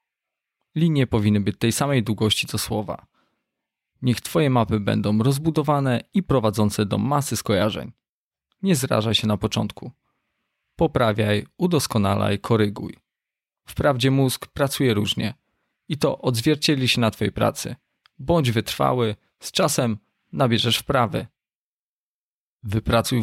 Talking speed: 115 wpm